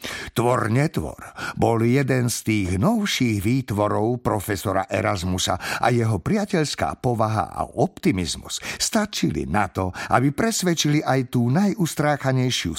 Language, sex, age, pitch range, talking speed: Slovak, male, 60-79, 110-175 Hz, 115 wpm